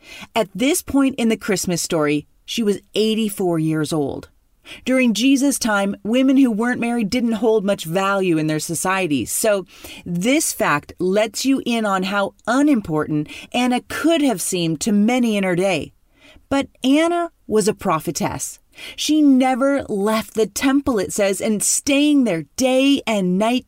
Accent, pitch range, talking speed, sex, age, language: American, 195-270 Hz, 155 wpm, female, 40-59, English